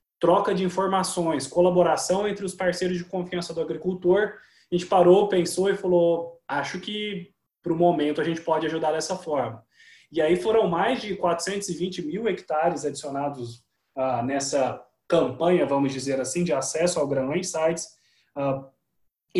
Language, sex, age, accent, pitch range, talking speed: Portuguese, male, 20-39, Brazilian, 145-180 Hz, 150 wpm